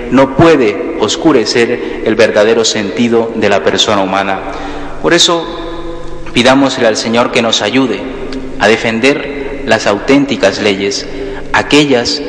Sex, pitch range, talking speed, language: male, 105-130 Hz, 115 wpm, Spanish